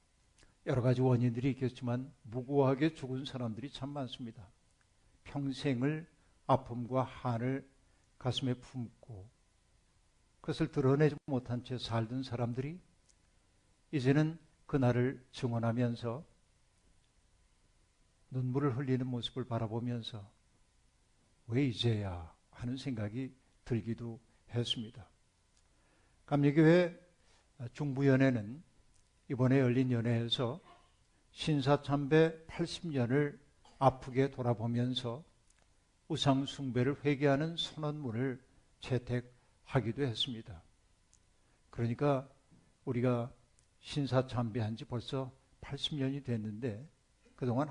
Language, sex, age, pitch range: Korean, male, 60-79, 115-135 Hz